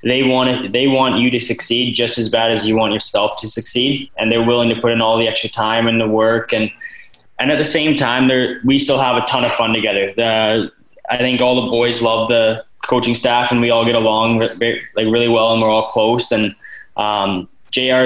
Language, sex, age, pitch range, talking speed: English, male, 10-29, 110-120 Hz, 235 wpm